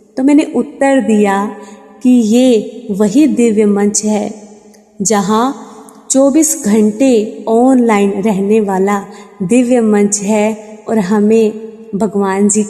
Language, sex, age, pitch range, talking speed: Hindi, female, 20-39, 205-240 Hz, 110 wpm